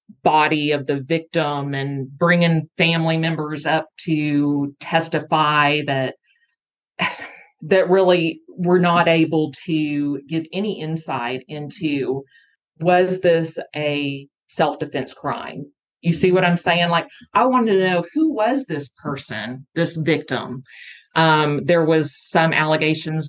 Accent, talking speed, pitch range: American, 125 wpm, 150-185 Hz